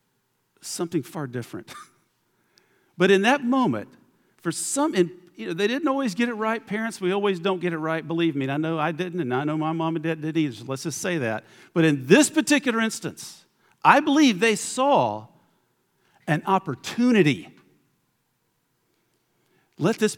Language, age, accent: English, 50-69, American